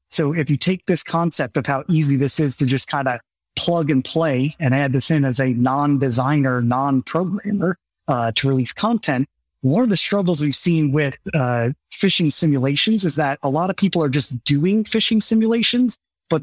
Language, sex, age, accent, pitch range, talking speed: English, male, 30-49, American, 135-170 Hz, 190 wpm